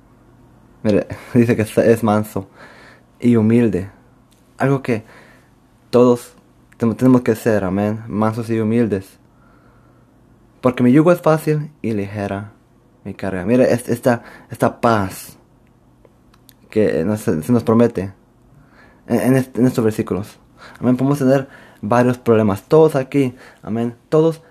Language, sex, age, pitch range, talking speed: Spanish, male, 20-39, 105-120 Hz, 120 wpm